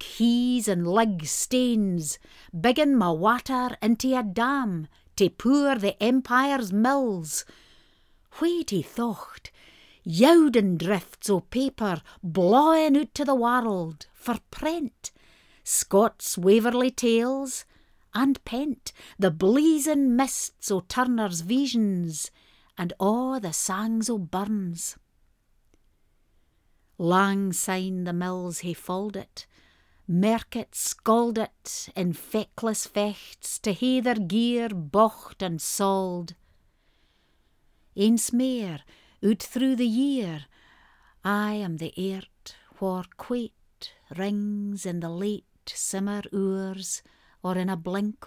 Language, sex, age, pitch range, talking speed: English, female, 60-79, 185-245 Hz, 110 wpm